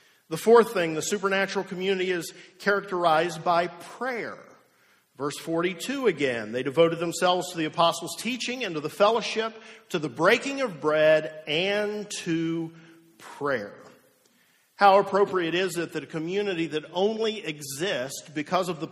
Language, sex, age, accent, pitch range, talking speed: English, male, 50-69, American, 155-195 Hz, 145 wpm